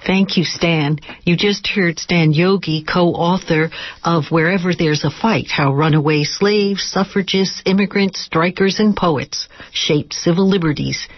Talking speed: 135 wpm